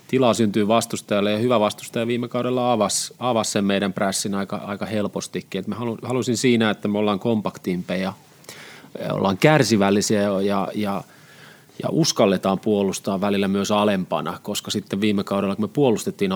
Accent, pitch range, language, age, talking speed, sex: native, 95-115 Hz, Finnish, 30-49, 145 wpm, male